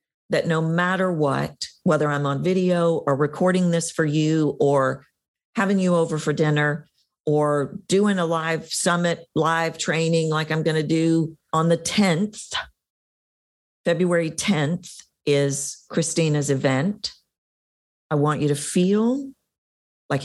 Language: English